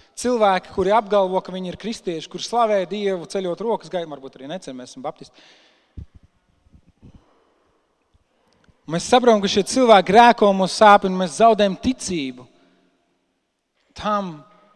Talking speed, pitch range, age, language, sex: 120 wpm, 170-215 Hz, 40-59, English, male